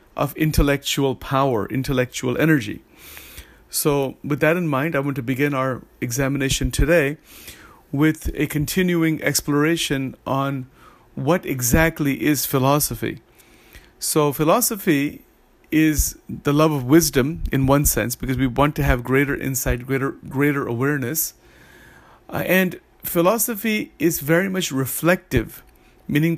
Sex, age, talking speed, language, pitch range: male, 50-69, 125 wpm, English, 135-165 Hz